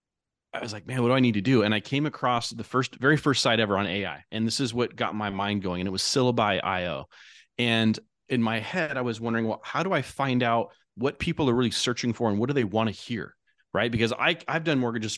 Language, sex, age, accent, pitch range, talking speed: English, male, 30-49, American, 105-125 Hz, 260 wpm